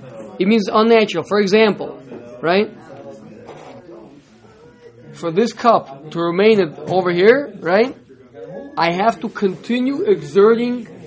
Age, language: 20-39, English